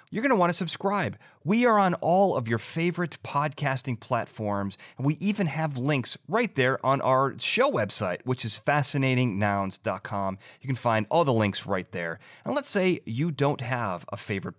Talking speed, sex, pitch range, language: 185 wpm, male, 105-145 Hz, English